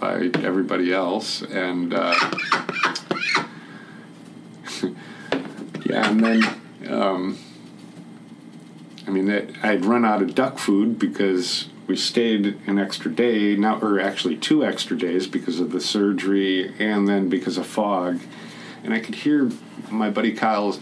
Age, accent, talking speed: 50-69, American, 135 wpm